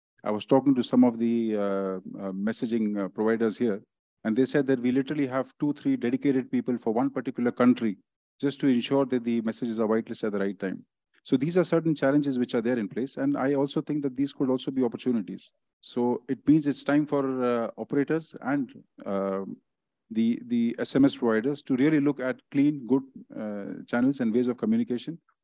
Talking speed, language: 205 wpm, English